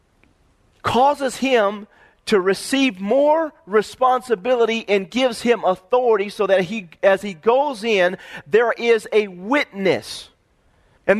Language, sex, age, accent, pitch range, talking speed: English, male, 40-59, American, 195-250 Hz, 120 wpm